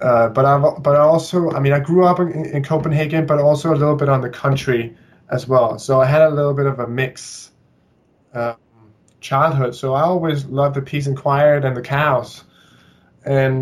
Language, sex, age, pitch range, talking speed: English, male, 20-39, 130-160 Hz, 205 wpm